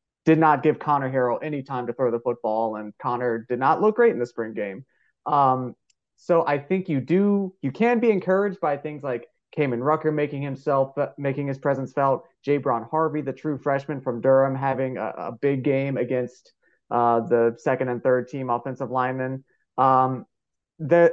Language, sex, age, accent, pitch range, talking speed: English, male, 30-49, American, 125-150 Hz, 185 wpm